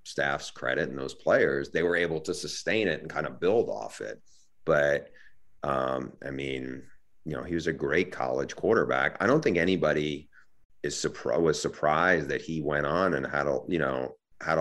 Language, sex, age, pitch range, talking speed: English, male, 30-49, 70-85 Hz, 190 wpm